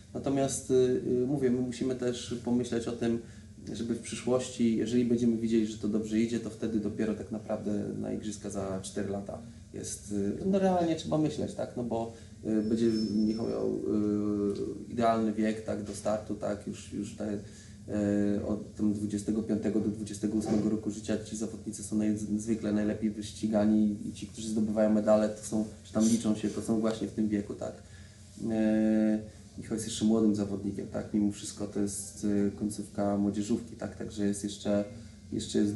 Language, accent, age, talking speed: Polish, native, 20-39, 175 wpm